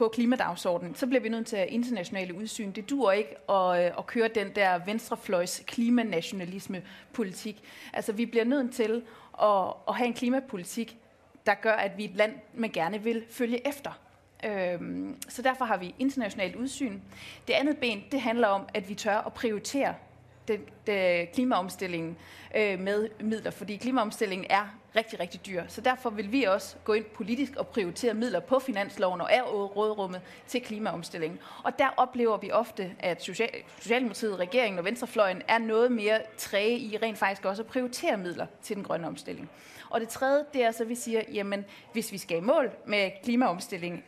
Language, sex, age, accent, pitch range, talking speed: Danish, female, 30-49, native, 200-245 Hz, 180 wpm